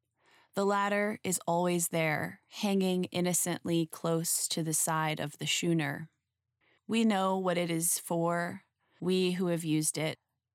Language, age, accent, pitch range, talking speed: English, 20-39, American, 160-185 Hz, 140 wpm